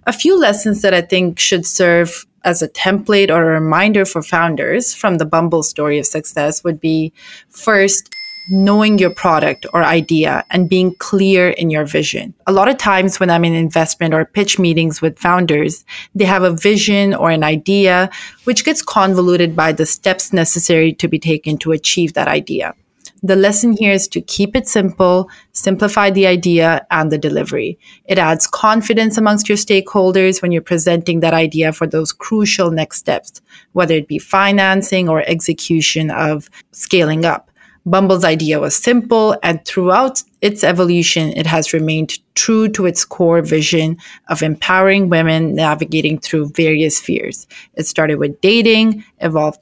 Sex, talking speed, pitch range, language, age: female, 165 wpm, 160-205 Hz, English, 30-49